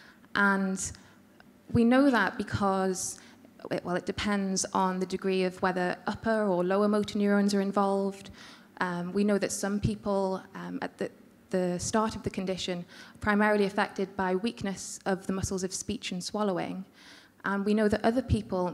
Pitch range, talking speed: 185-210 Hz, 165 wpm